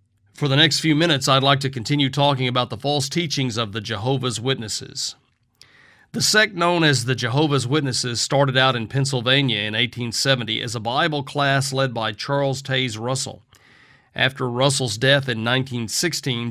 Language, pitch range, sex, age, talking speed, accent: English, 120-145 Hz, male, 40-59, 165 wpm, American